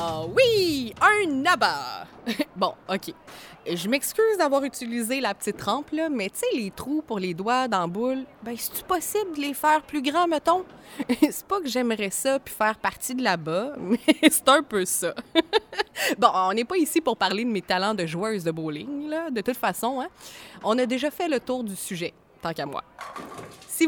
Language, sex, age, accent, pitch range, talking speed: French, female, 20-39, Canadian, 205-285 Hz, 195 wpm